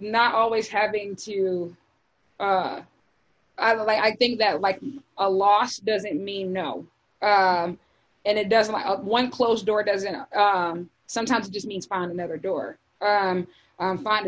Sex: female